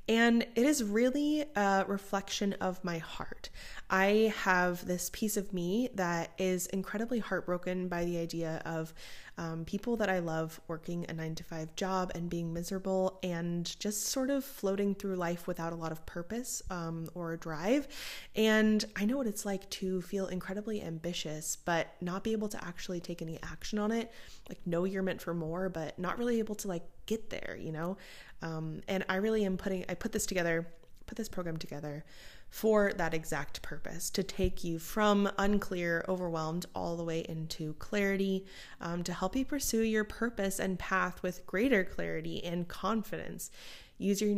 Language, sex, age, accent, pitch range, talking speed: English, female, 20-39, American, 165-205 Hz, 180 wpm